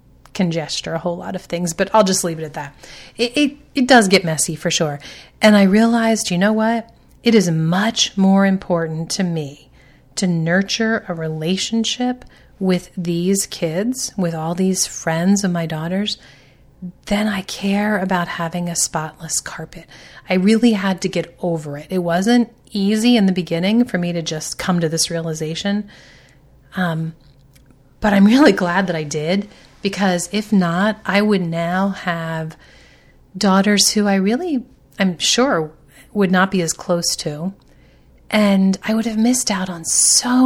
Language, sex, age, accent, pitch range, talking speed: English, female, 30-49, American, 165-205 Hz, 165 wpm